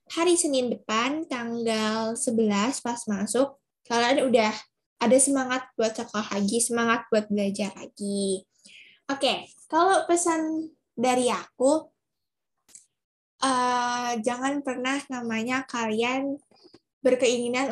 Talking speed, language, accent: 100 wpm, Indonesian, native